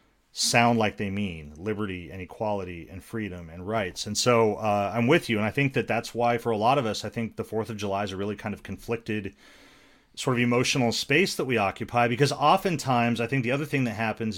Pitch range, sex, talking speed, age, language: 110-145 Hz, male, 235 wpm, 40-59, English